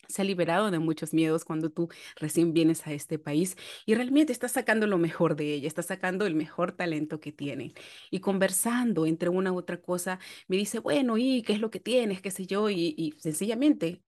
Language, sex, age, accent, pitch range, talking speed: Spanish, female, 30-49, Venezuelan, 165-210 Hz, 215 wpm